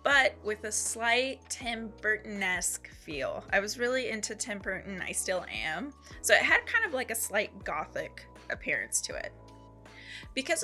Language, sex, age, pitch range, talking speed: English, female, 20-39, 190-235 Hz, 165 wpm